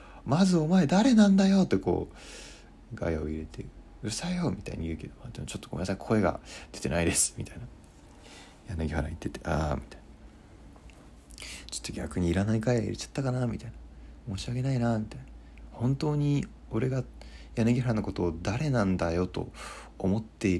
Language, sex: Japanese, male